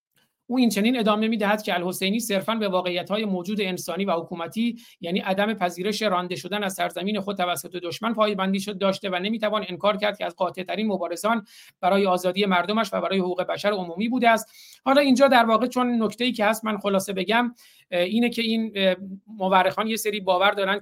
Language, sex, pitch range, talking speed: Persian, male, 180-215 Hz, 185 wpm